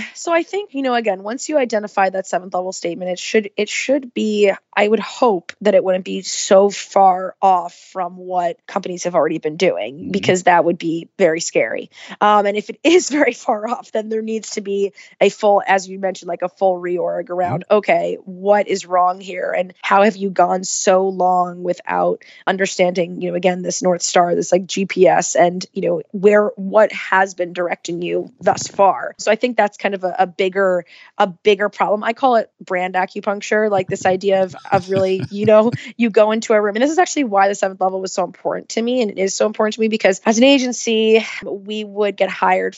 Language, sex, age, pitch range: English, female, 20-39, 180-215 Hz